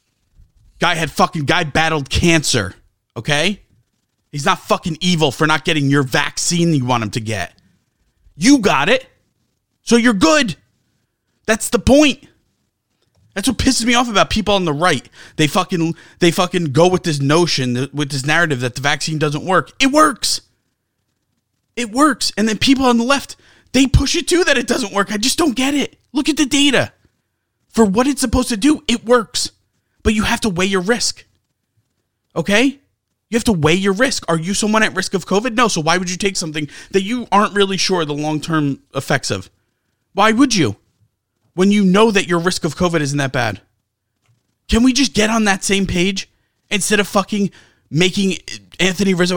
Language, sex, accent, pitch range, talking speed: English, male, American, 135-210 Hz, 190 wpm